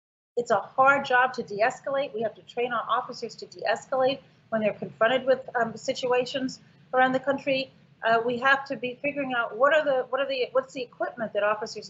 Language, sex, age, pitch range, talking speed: English, female, 40-59, 205-265 Hz, 205 wpm